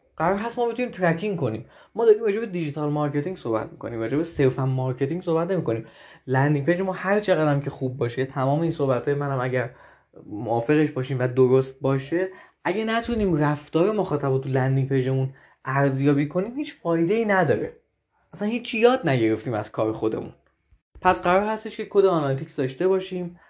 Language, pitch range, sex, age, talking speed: Persian, 130-185 Hz, male, 10-29, 180 wpm